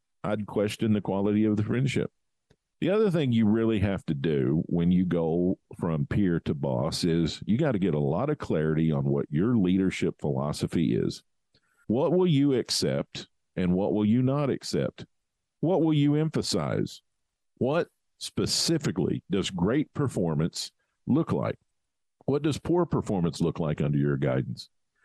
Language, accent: English, American